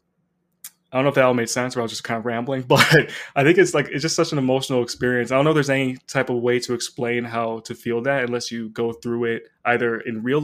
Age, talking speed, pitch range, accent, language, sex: 20-39, 280 wpm, 120-145 Hz, American, English, male